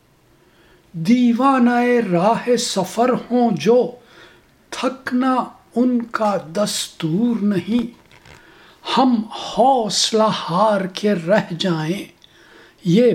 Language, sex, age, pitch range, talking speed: Urdu, male, 60-79, 190-245 Hz, 80 wpm